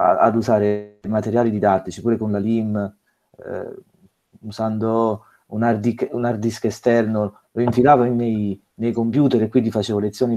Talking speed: 140 wpm